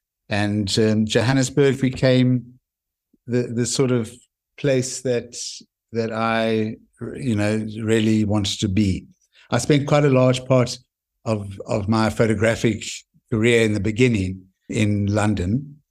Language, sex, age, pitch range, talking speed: English, male, 60-79, 105-120 Hz, 130 wpm